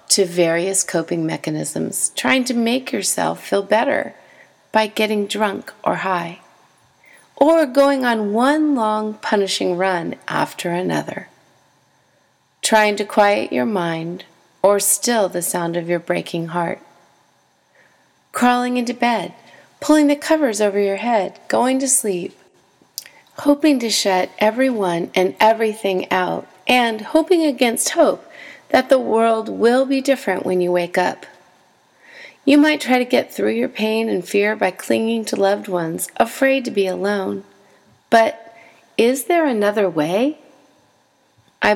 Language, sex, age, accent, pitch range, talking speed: English, female, 30-49, American, 190-250 Hz, 135 wpm